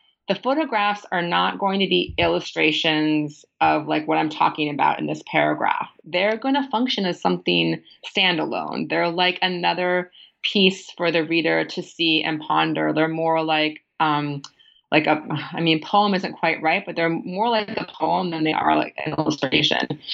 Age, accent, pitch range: 30-49, American, 155-185 Hz